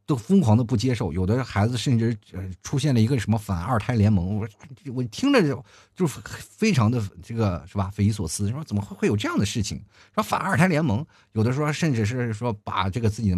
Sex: male